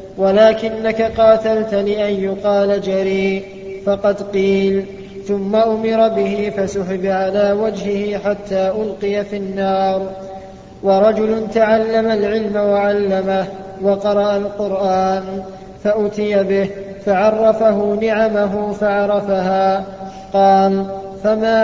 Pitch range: 195-210 Hz